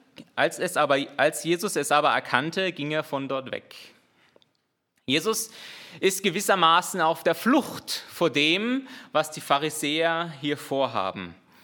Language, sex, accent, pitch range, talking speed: German, male, German, 160-200 Hz, 135 wpm